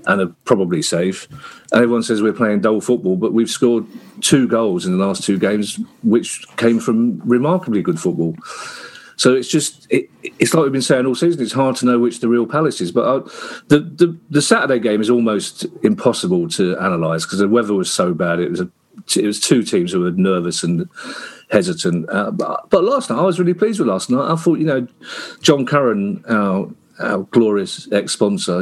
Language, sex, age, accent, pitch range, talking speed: English, male, 40-59, British, 110-150 Hz, 210 wpm